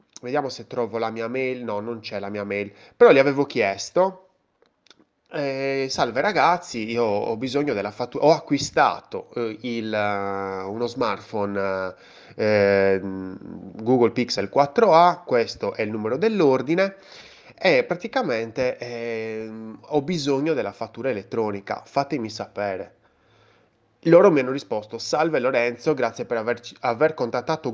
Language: Italian